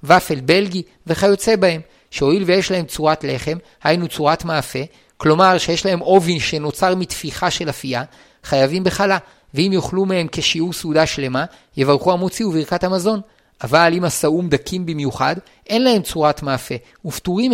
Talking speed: 145 wpm